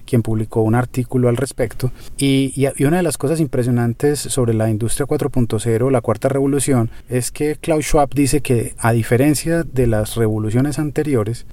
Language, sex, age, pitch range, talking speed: Spanish, male, 30-49, 115-140 Hz, 165 wpm